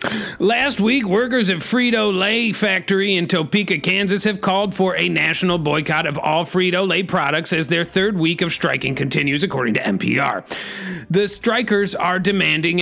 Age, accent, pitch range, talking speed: 30-49, American, 170-205 Hz, 165 wpm